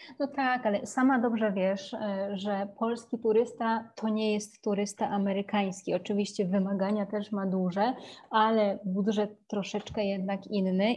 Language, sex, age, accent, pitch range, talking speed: Polish, female, 30-49, native, 200-230 Hz, 130 wpm